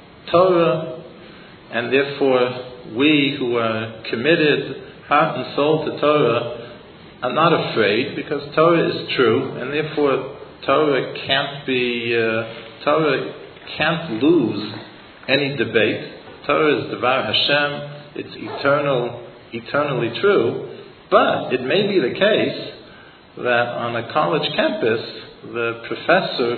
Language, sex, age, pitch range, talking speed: English, male, 50-69, 115-145 Hz, 115 wpm